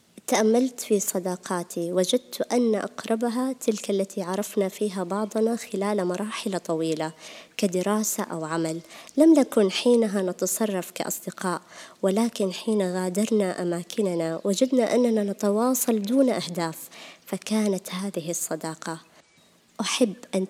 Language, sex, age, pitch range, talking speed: Arabic, male, 20-39, 180-230 Hz, 105 wpm